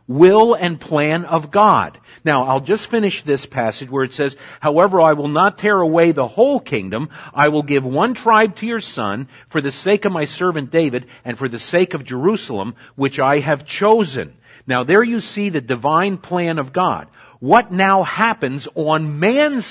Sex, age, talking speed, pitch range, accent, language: male, 50-69, 190 wpm, 130-185 Hz, American, Italian